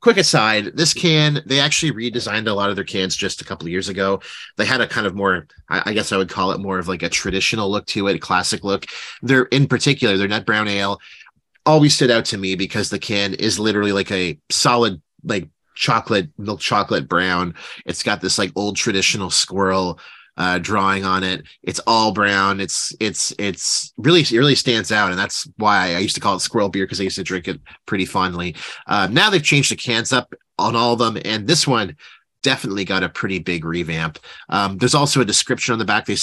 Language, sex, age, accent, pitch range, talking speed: English, male, 30-49, American, 95-120 Hz, 225 wpm